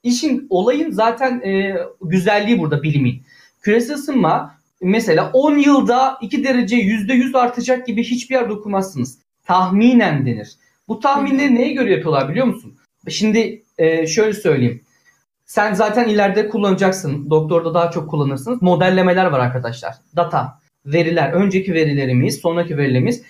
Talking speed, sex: 130 wpm, male